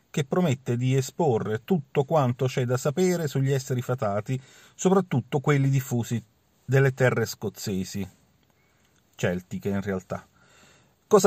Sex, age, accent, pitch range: male, 40-59, native, 115-140 Hz